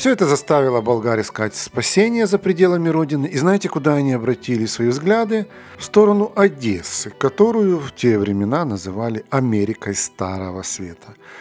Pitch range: 105-150 Hz